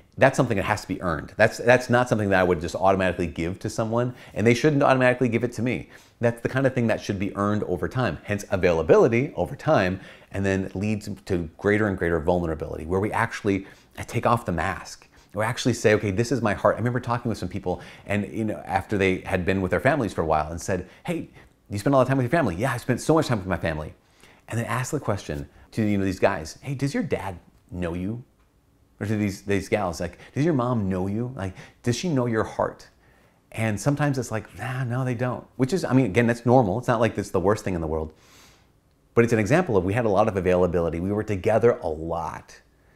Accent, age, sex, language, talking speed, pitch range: American, 30-49, male, English, 250 wpm, 90-120 Hz